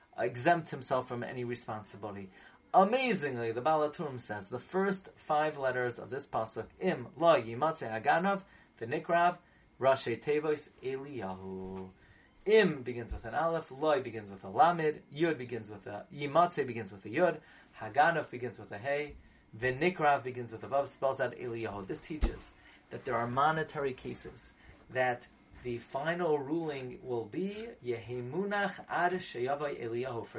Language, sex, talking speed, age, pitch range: English, male, 135 wpm, 30-49, 120-165 Hz